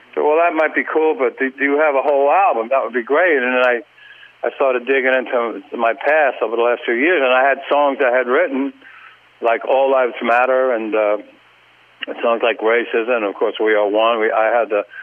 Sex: male